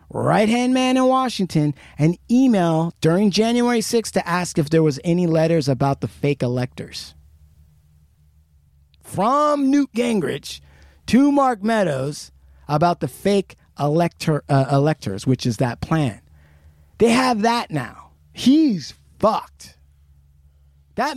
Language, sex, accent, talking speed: English, male, American, 120 wpm